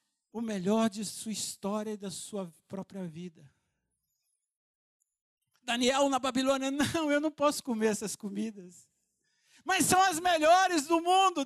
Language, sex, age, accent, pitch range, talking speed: Portuguese, male, 60-79, Brazilian, 165-240 Hz, 135 wpm